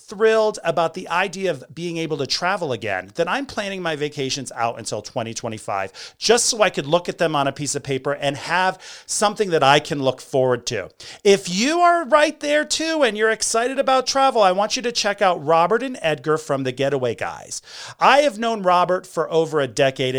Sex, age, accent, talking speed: male, 40-59, American, 210 wpm